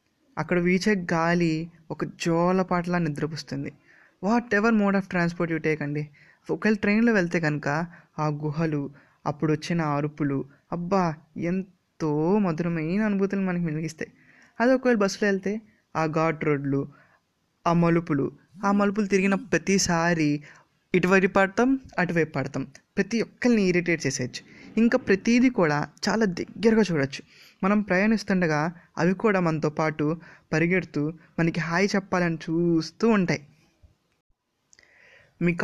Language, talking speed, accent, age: Telugu, 115 wpm, native, 20-39